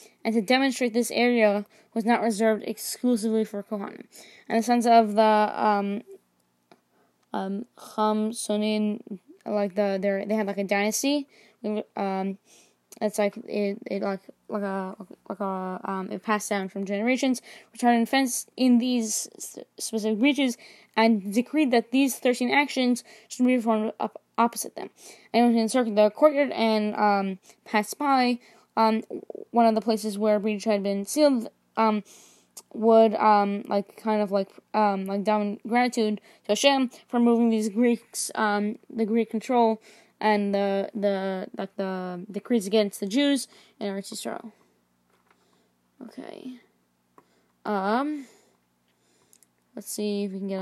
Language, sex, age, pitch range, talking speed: English, female, 20-39, 195-230 Hz, 145 wpm